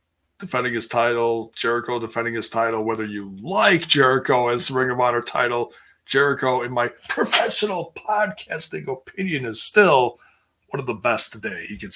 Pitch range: 115-160 Hz